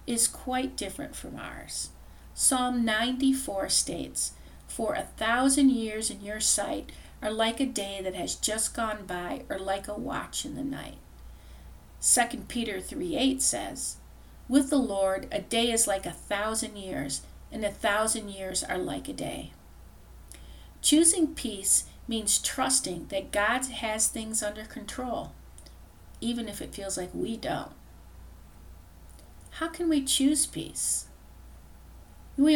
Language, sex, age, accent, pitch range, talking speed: English, female, 50-69, American, 175-250 Hz, 140 wpm